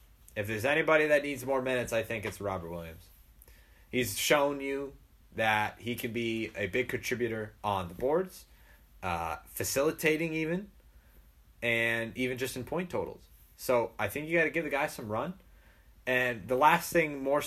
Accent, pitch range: American, 85-140 Hz